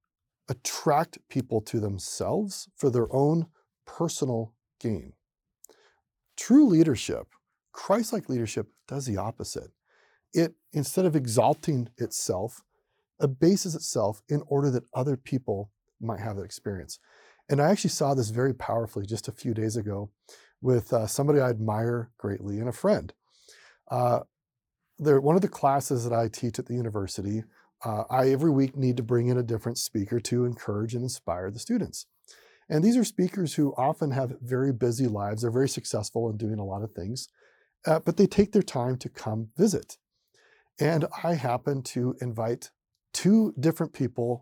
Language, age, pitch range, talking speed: English, 40-59, 115-150 Hz, 160 wpm